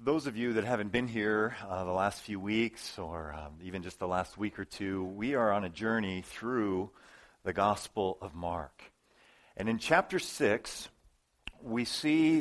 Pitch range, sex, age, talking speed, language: 110-155 Hz, male, 40-59, 180 wpm, English